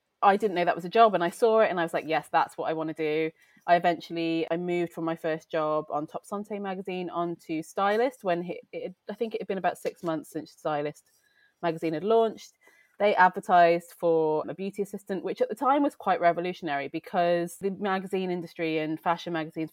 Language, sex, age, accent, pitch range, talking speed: English, female, 20-39, British, 160-185 Hz, 215 wpm